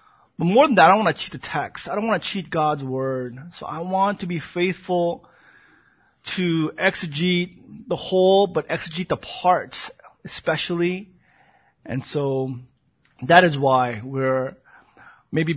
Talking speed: 155 wpm